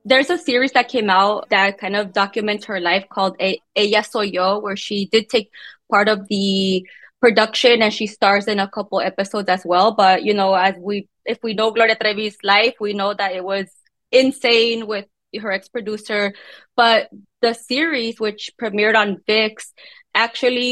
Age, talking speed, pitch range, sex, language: 20-39, 180 wpm, 200-235 Hz, female, English